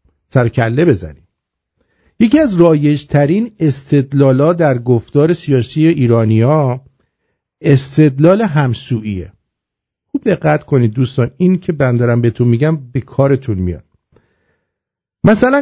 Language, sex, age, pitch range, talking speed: English, male, 50-69, 125-180 Hz, 100 wpm